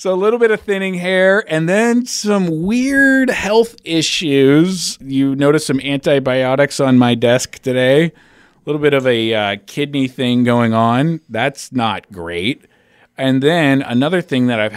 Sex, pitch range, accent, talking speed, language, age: male, 95-135 Hz, American, 165 wpm, English, 30-49